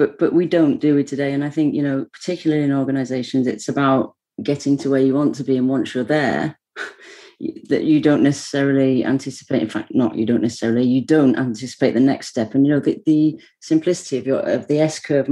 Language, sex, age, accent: English, female, 40-59, British